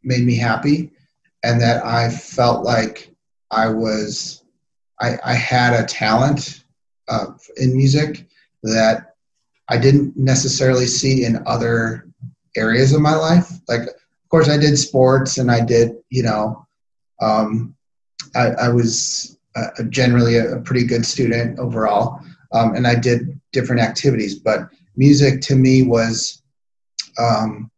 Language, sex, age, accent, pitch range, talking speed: English, male, 30-49, American, 115-140 Hz, 135 wpm